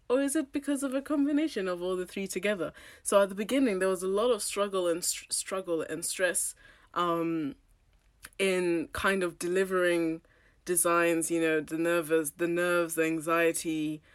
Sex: female